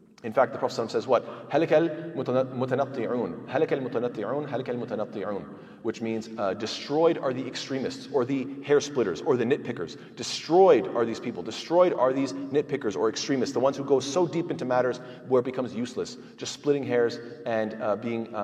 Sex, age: male, 30-49